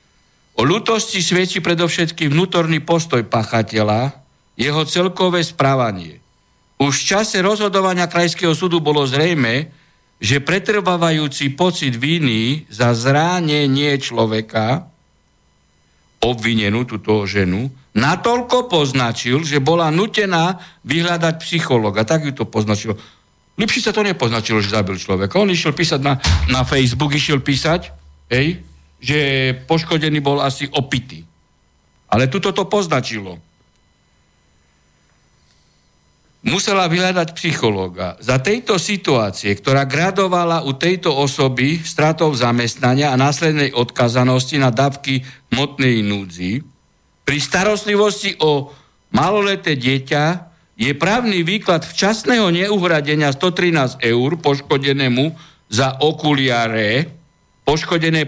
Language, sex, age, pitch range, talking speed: Slovak, male, 60-79, 115-170 Hz, 105 wpm